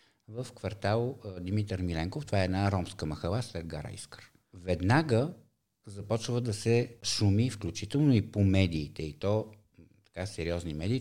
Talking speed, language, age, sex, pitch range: 135 wpm, Bulgarian, 50-69, male, 90-115 Hz